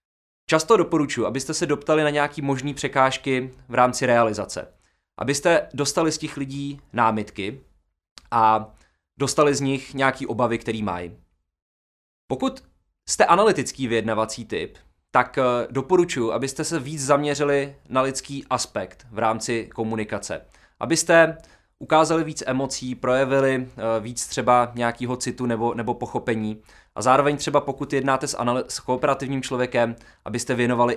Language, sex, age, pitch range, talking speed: Czech, male, 20-39, 115-140 Hz, 130 wpm